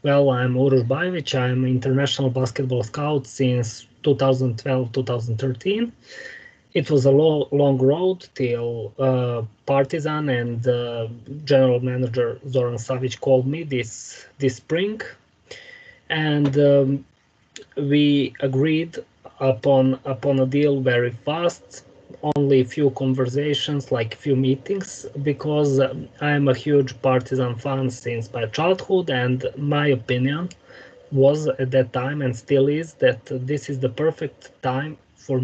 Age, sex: 20-39, male